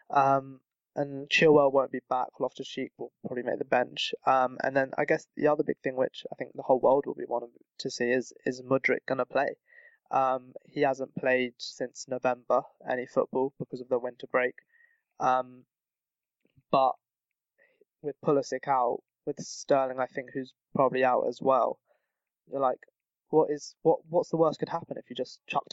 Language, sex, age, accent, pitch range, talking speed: English, male, 20-39, British, 125-150 Hz, 180 wpm